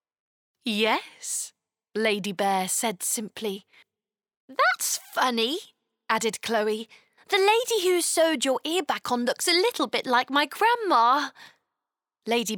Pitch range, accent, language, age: 215-315 Hz, British, French, 20-39